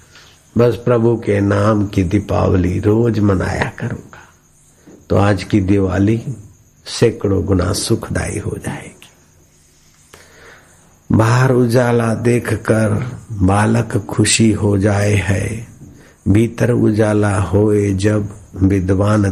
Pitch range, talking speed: 95-105 Hz, 95 wpm